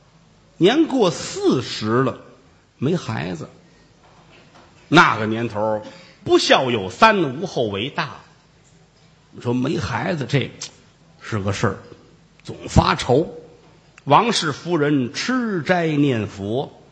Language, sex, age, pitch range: Chinese, male, 50-69, 120-175 Hz